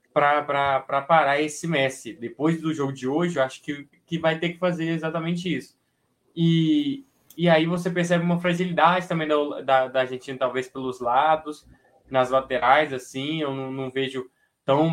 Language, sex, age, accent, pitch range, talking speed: Portuguese, male, 20-39, Brazilian, 130-155 Hz, 170 wpm